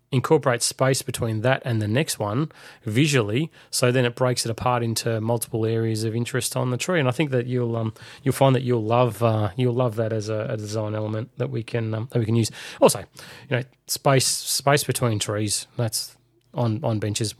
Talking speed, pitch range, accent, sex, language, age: 215 wpm, 110-130 Hz, Australian, male, English, 30-49